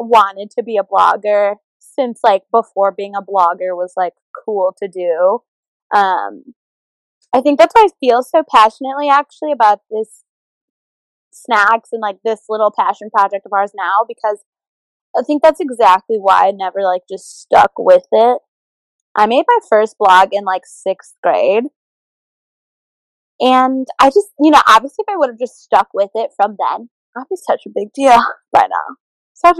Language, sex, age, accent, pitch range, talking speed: English, female, 20-39, American, 200-265 Hz, 170 wpm